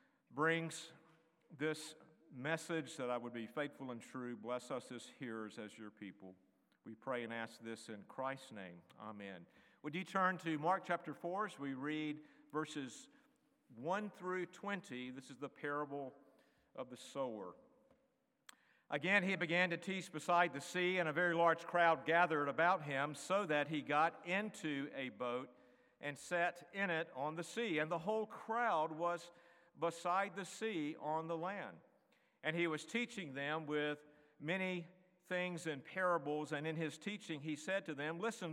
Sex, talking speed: male, 165 wpm